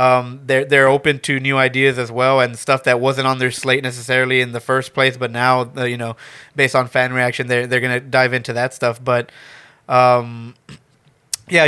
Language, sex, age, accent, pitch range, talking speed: English, male, 20-39, American, 125-135 Hz, 205 wpm